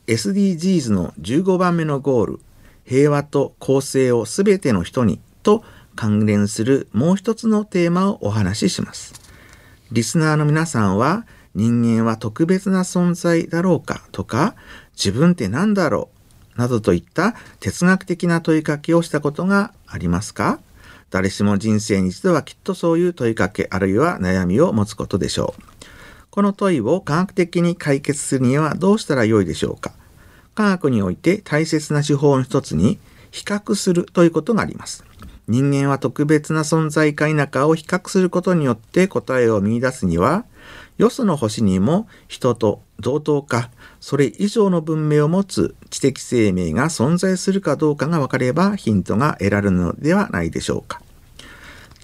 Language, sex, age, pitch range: Japanese, male, 50-69, 110-175 Hz